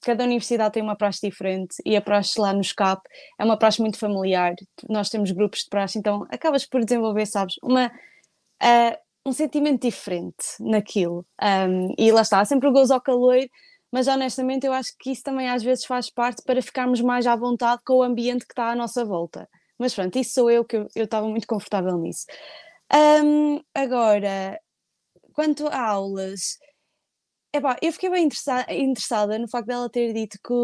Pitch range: 220-270 Hz